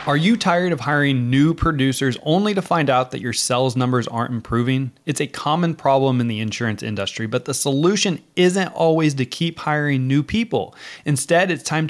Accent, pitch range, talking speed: American, 125-165 Hz, 190 wpm